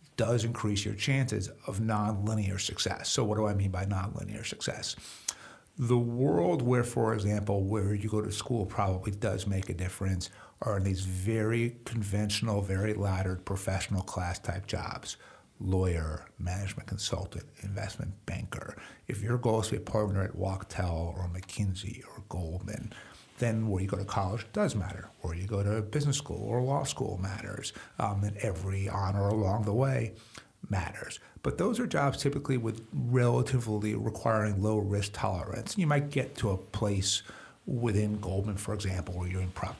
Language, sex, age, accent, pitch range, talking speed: English, male, 50-69, American, 95-115 Hz, 165 wpm